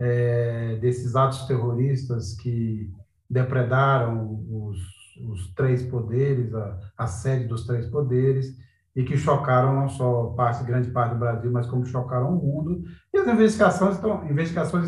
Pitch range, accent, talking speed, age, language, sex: 120-145 Hz, Brazilian, 145 wpm, 40-59, Portuguese, male